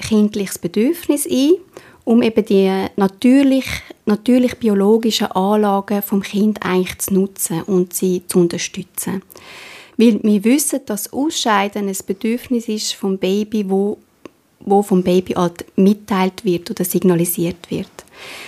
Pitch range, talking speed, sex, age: 185-230 Hz, 125 wpm, female, 20-39